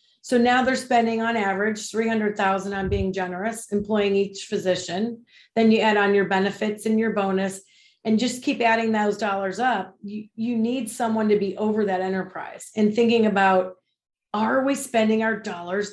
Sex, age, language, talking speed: female, 30-49, English, 175 wpm